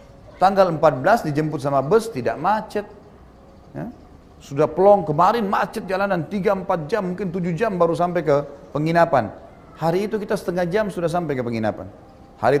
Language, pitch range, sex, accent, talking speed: Indonesian, 140-190 Hz, male, native, 150 wpm